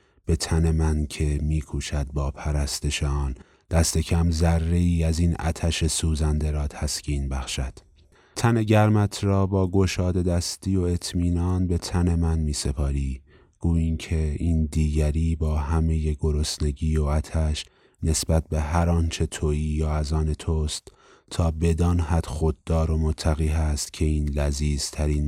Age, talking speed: 30-49, 135 wpm